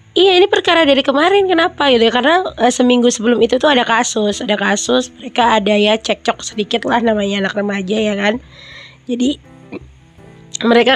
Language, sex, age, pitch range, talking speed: Indonesian, female, 20-39, 220-275 Hz, 170 wpm